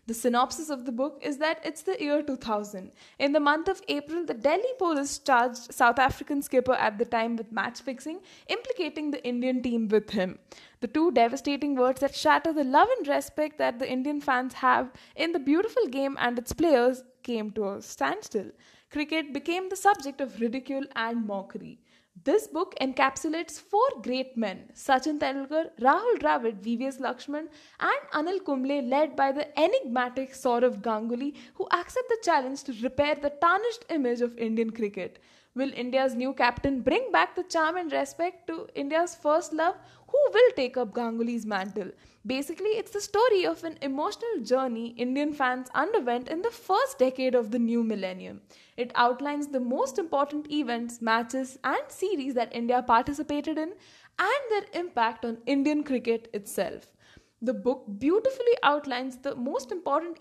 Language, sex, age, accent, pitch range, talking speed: English, female, 10-29, Indian, 245-315 Hz, 165 wpm